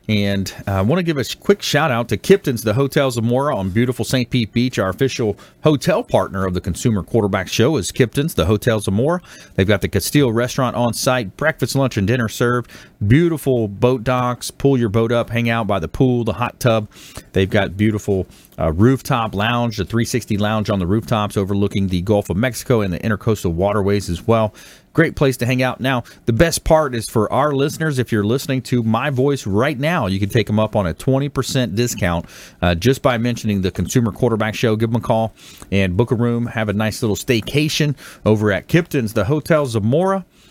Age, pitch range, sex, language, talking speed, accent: 40-59, 105-130 Hz, male, English, 205 wpm, American